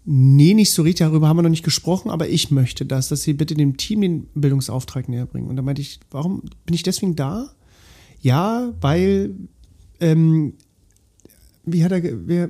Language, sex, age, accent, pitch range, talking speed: German, male, 40-59, German, 140-175 Hz, 185 wpm